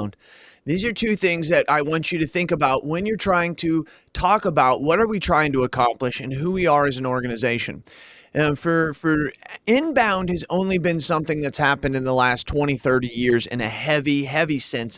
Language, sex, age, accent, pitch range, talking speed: English, male, 30-49, American, 140-185 Hz, 205 wpm